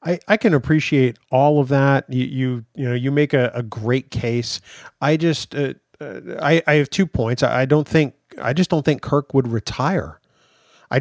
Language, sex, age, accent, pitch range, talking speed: English, male, 30-49, American, 115-145 Hz, 205 wpm